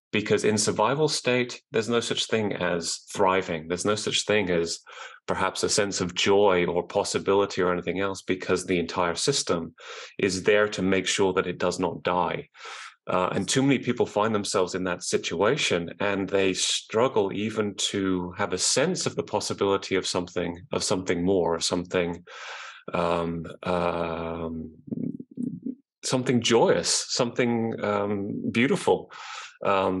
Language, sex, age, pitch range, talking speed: English, male, 30-49, 90-110 Hz, 150 wpm